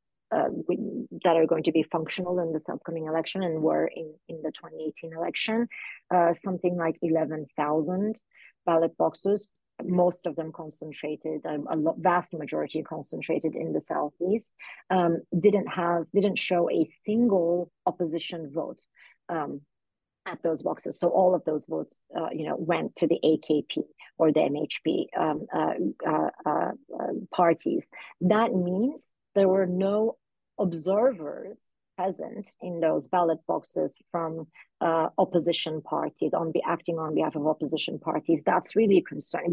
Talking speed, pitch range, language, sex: 150 wpm, 160-195 Hz, English, female